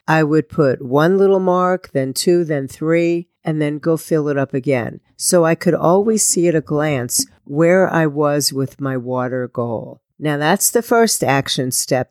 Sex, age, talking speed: female, 50-69, 190 wpm